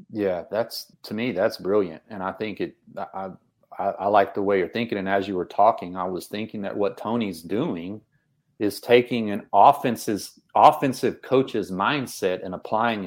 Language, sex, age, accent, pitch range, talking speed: English, male, 40-59, American, 105-125 Hz, 180 wpm